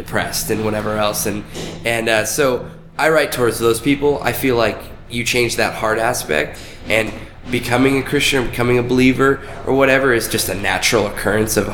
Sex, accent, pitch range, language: male, American, 105-120 Hz, English